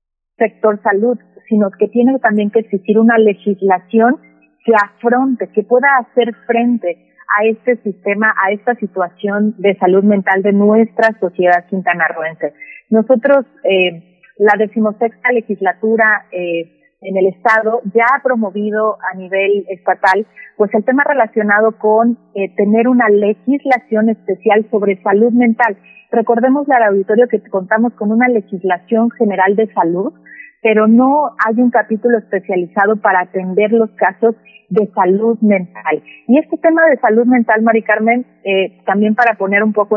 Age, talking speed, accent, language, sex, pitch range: 40-59, 145 wpm, Mexican, Spanish, female, 195-230 Hz